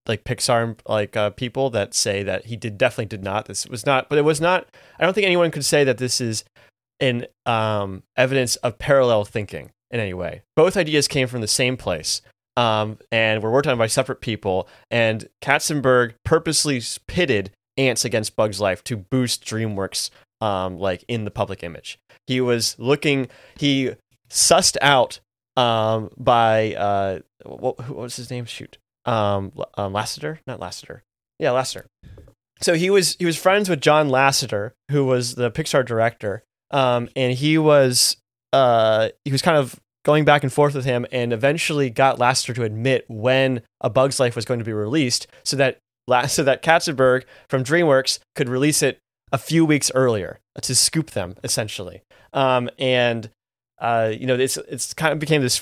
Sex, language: male, English